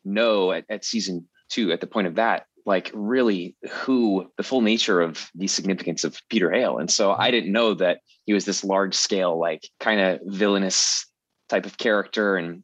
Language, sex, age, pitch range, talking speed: English, male, 20-39, 95-110 Hz, 195 wpm